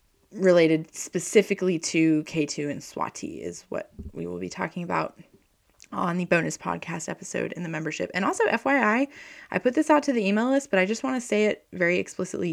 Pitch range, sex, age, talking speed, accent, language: 160-220 Hz, female, 20-39, 195 wpm, American, English